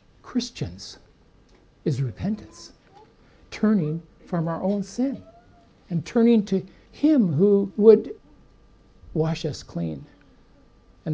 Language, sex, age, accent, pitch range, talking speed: English, male, 60-79, American, 145-205 Hz, 95 wpm